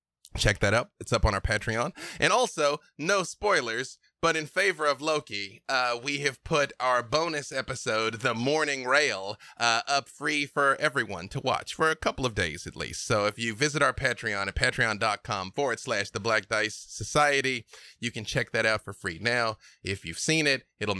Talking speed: 195 wpm